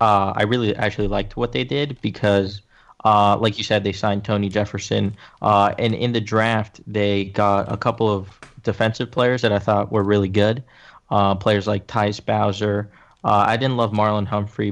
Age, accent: 20-39, American